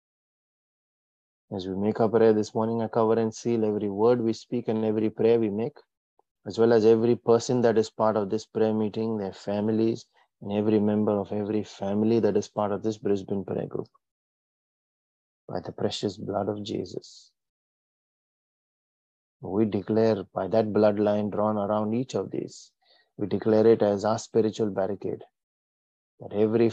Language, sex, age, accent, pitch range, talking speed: English, male, 30-49, Indian, 105-115 Hz, 165 wpm